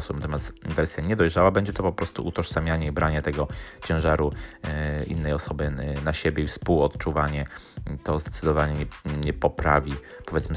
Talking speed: 130 wpm